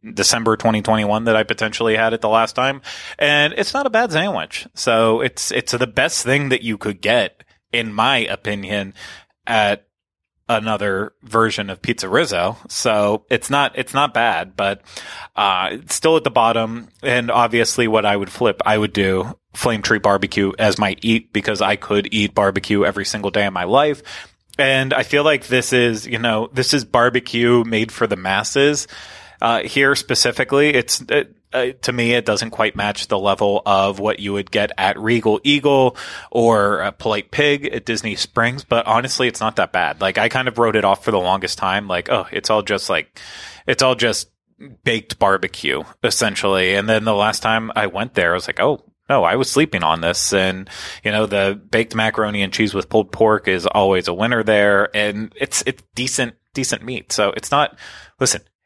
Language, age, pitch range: English, 30-49, 105-120 Hz